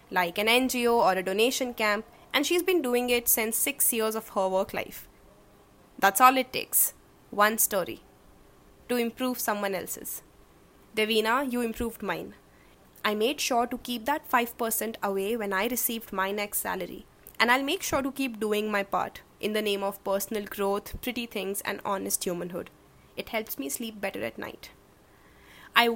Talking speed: 175 wpm